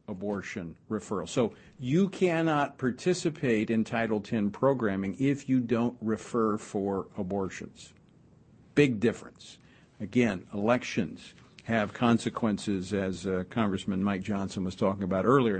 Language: English